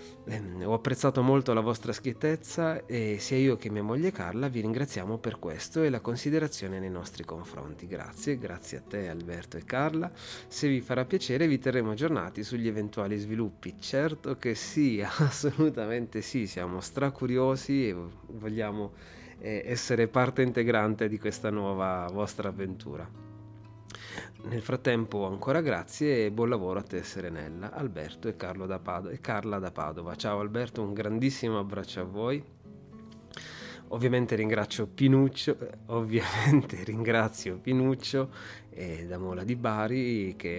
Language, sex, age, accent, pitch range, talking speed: Italian, male, 30-49, native, 95-125 Hz, 135 wpm